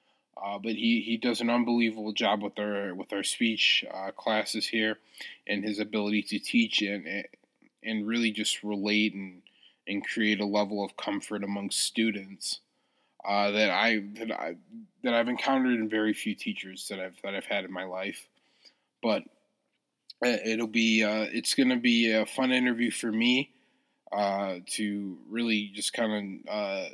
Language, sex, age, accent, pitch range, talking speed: English, male, 20-39, American, 100-115 Hz, 165 wpm